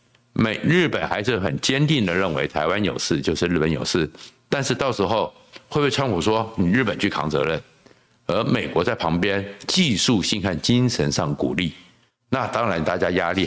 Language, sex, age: Chinese, male, 60-79